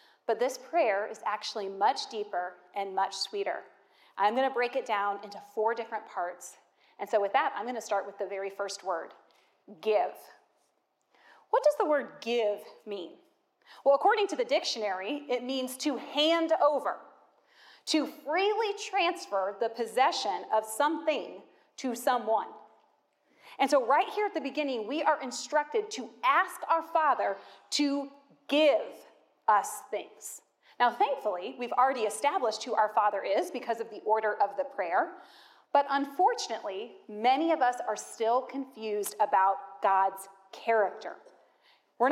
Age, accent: 30-49, American